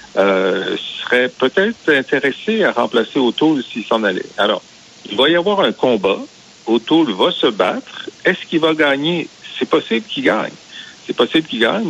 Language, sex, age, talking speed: French, male, 60-79, 165 wpm